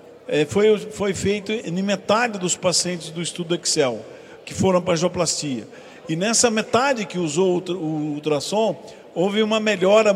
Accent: Brazilian